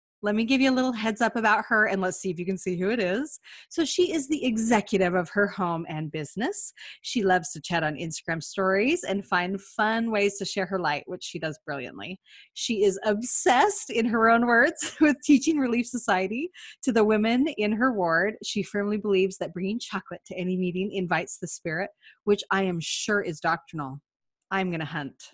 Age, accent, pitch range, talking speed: 30-49, American, 180-245 Hz, 210 wpm